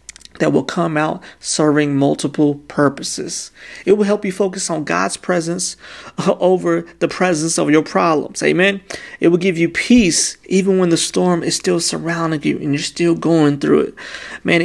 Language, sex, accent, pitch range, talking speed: English, male, American, 145-180 Hz, 170 wpm